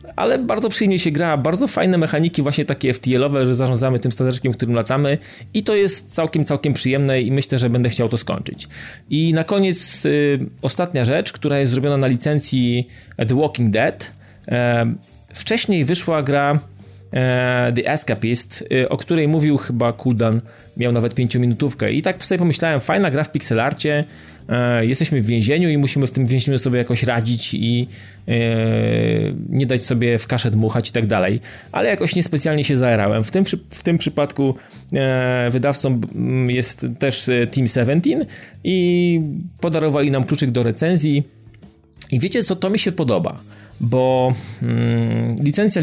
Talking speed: 155 wpm